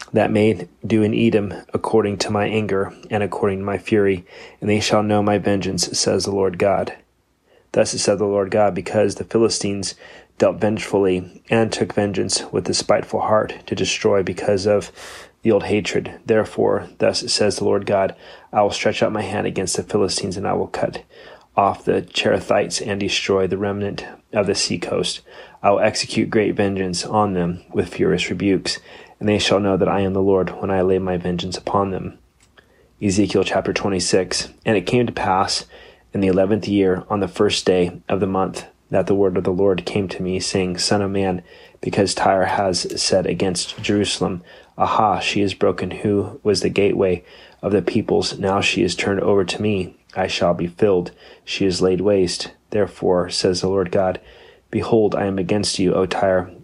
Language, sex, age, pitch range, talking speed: English, male, 30-49, 95-105 Hz, 190 wpm